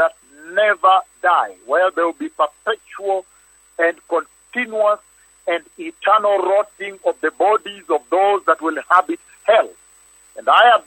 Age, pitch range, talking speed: 50-69, 175-225 Hz, 145 wpm